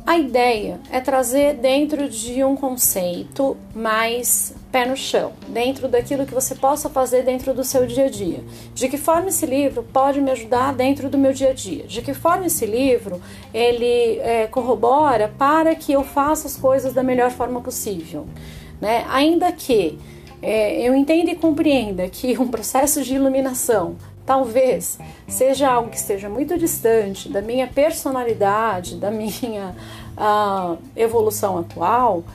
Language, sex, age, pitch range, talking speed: Portuguese, female, 30-49, 240-300 Hz, 145 wpm